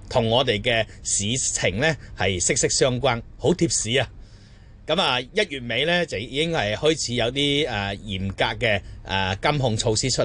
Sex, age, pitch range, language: male, 30-49, 105-150 Hz, Chinese